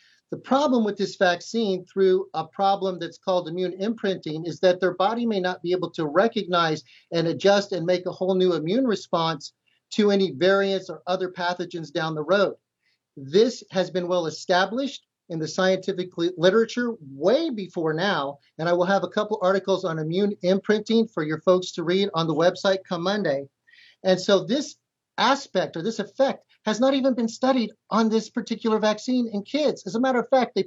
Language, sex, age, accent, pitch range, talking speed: English, male, 40-59, American, 175-215 Hz, 190 wpm